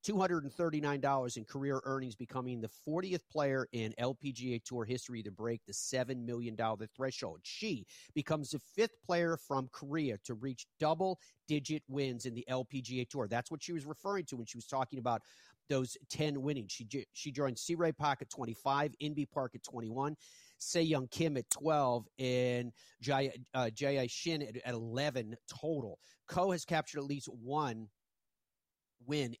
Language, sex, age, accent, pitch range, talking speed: English, male, 30-49, American, 120-145 Hz, 155 wpm